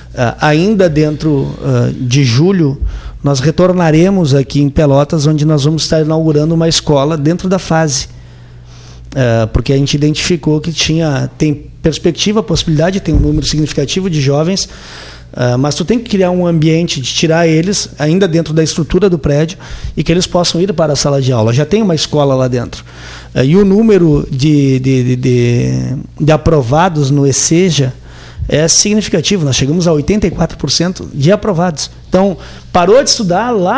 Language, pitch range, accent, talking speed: Portuguese, 145-200 Hz, Brazilian, 155 wpm